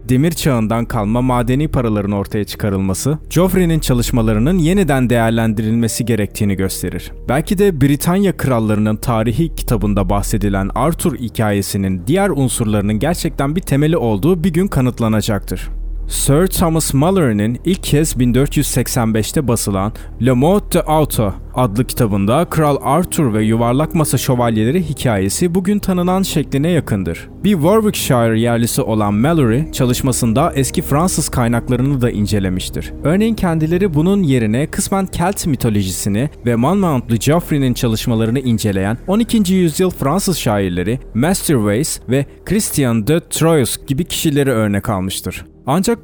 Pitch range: 110-160 Hz